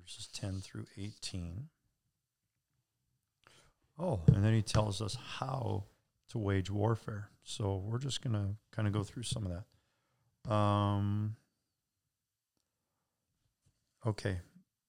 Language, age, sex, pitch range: English, 50-69, male, 100-125 Hz